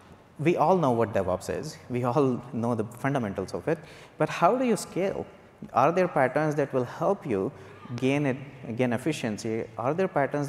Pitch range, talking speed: 115-140 Hz, 175 wpm